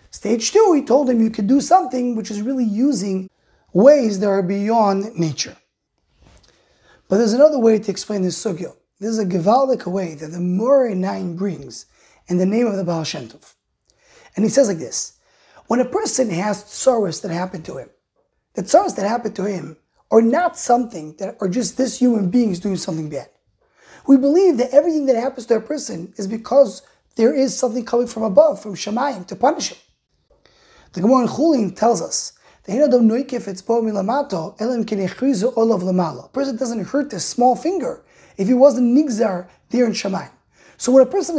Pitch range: 195-260 Hz